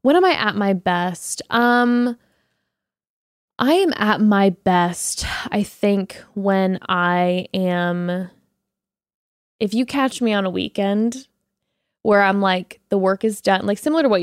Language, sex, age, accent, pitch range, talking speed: English, female, 10-29, American, 180-210 Hz, 150 wpm